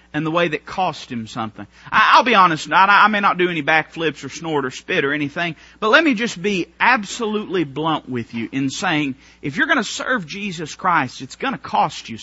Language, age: English, 40-59